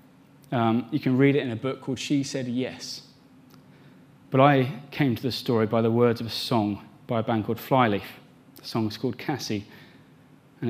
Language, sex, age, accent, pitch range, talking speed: English, male, 30-49, British, 115-135 Hz, 195 wpm